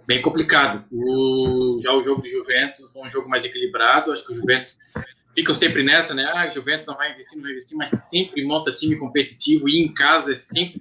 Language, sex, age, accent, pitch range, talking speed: Portuguese, male, 20-39, Brazilian, 140-195 Hz, 215 wpm